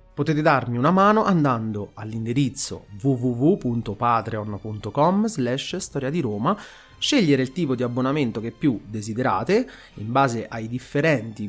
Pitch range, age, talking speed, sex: 115-180 Hz, 30-49, 100 wpm, male